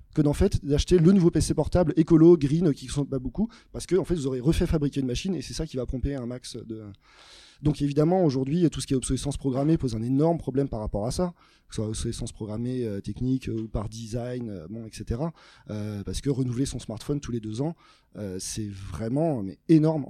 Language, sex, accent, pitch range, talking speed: French, male, French, 115-150 Hz, 230 wpm